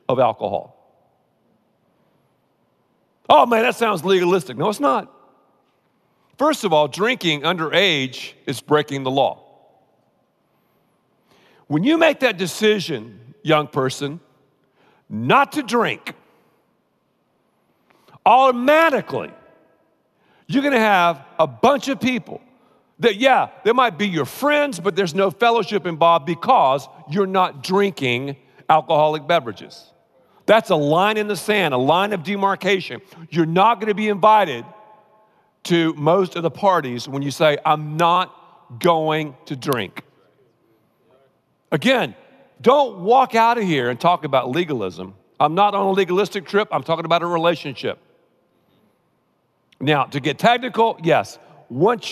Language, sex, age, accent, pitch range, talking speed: English, male, 50-69, American, 155-210 Hz, 125 wpm